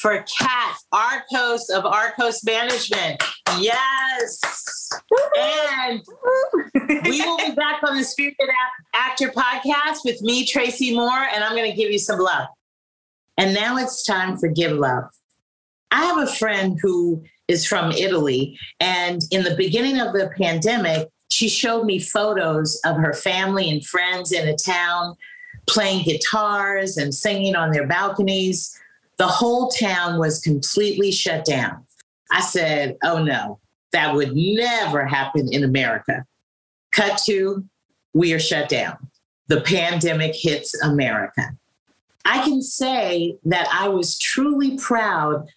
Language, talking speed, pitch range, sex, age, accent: English, 140 wpm, 160-235 Hz, female, 40-59, American